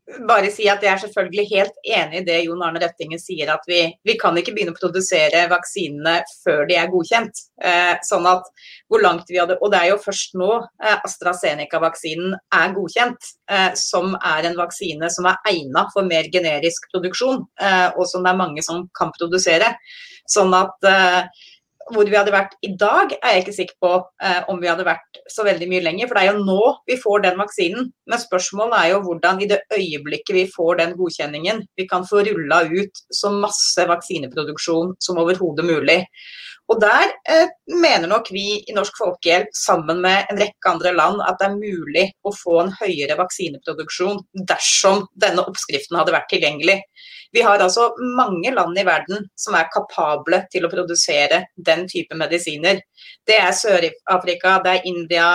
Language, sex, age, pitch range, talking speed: English, female, 30-49, 175-205 Hz, 190 wpm